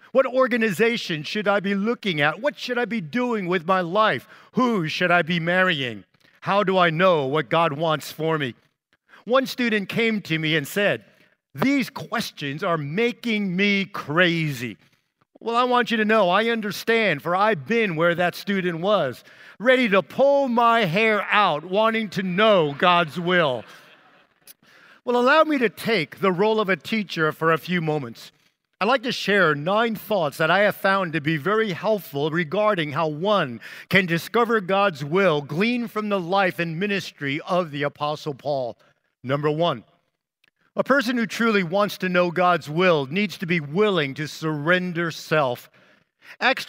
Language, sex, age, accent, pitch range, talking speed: English, male, 50-69, American, 160-220 Hz, 170 wpm